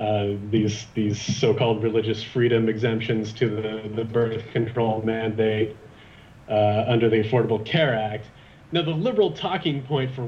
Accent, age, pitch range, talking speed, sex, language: American, 40-59, 115-145 Hz, 145 wpm, male, English